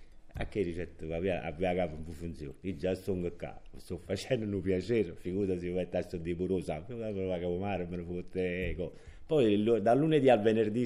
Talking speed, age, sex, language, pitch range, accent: 155 wpm, 50-69, male, Italian, 80-95 Hz, native